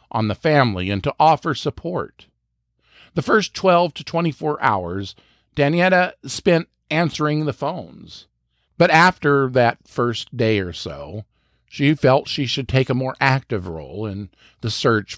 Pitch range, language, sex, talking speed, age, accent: 105-155 Hz, English, male, 145 wpm, 50-69, American